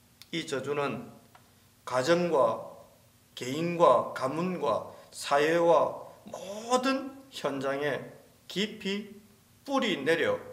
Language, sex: Korean, male